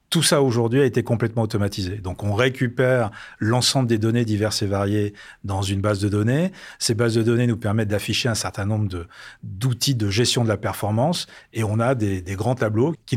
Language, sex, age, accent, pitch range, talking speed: French, male, 40-59, French, 110-135 Hz, 210 wpm